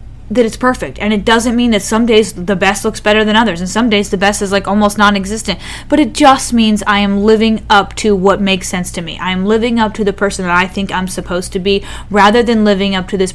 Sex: female